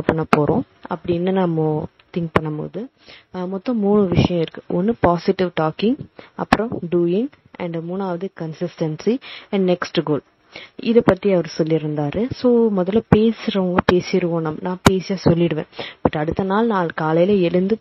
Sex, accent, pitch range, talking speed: female, native, 170-210 Hz, 35 wpm